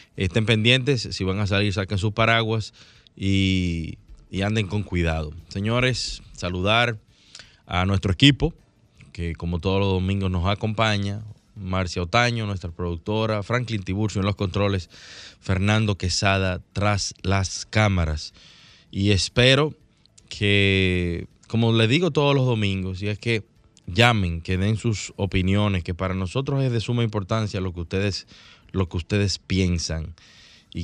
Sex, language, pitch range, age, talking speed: male, Spanish, 95-110 Hz, 20-39, 140 wpm